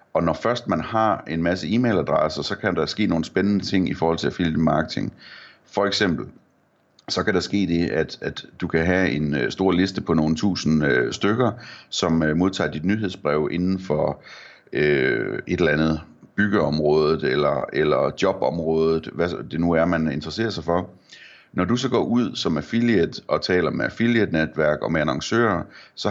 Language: Danish